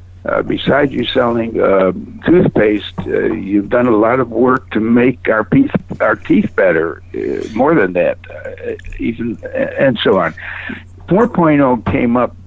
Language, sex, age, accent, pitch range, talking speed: English, male, 60-79, American, 90-125 Hz, 155 wpm